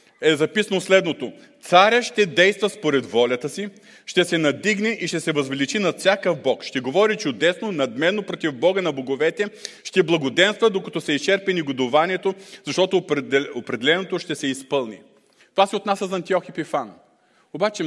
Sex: male